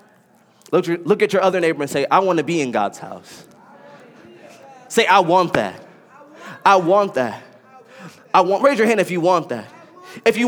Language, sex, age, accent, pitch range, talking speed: English, male, 20-39, American, 165-230 Hz, 185 wpm